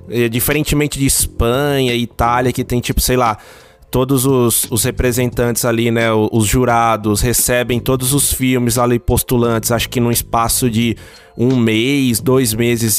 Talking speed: 150 wpm